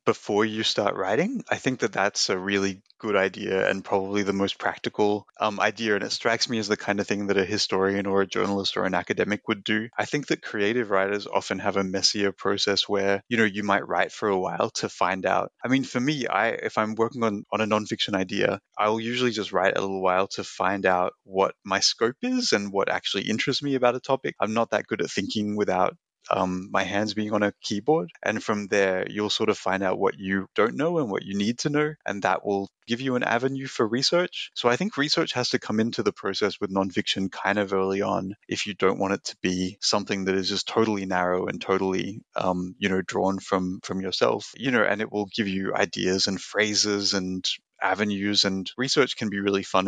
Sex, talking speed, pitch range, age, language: male, 235 wpm, 95-110 Hz, 20-39, English